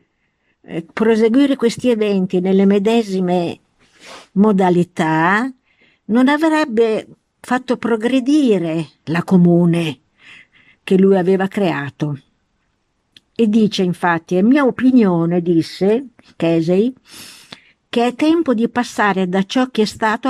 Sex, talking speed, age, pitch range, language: female, 100 wpm, 50-69, 175-235 Hz, Italian